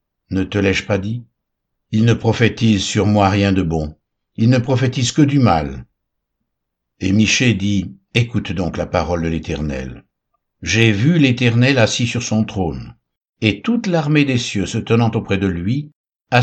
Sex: male